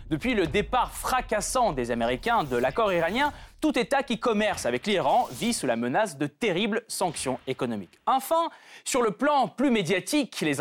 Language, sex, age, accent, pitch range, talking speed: French, male, 30-49, French, 160-235 Hz, 170 wpm